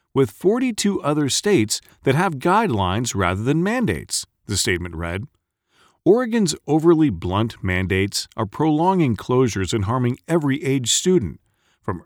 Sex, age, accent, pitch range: male, 40-59, American, 100-155 Hz